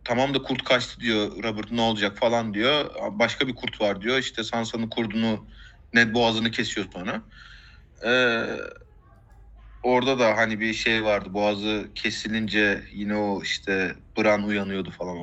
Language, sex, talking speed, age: Turkish, male, 145 wpm, 30-49